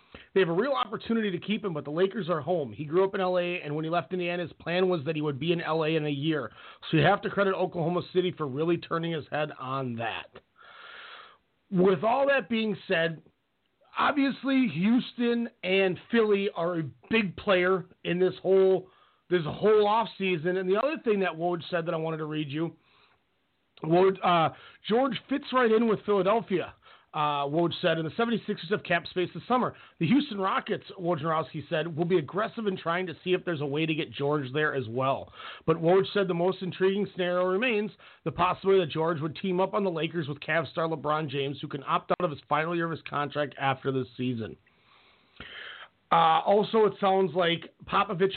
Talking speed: 205 wpm